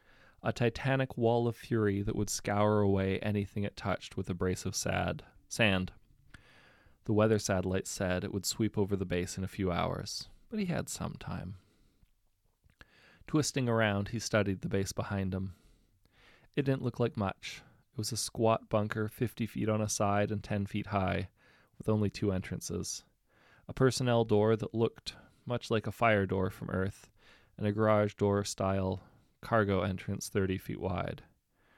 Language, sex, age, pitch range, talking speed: English, male, 20-39, 95-115 Hz, 170 wpm